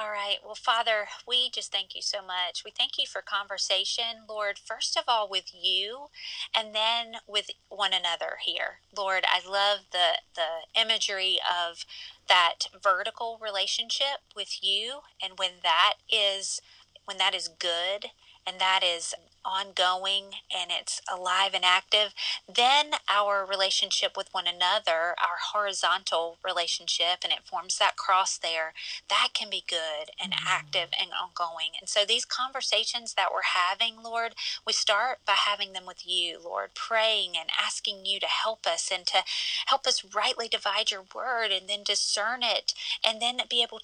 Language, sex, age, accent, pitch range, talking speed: English, female, 30-49, American, 185-225 Hz, 160 wpm